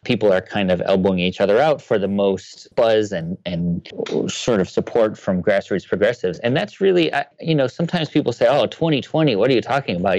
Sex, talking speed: male, 205 wpm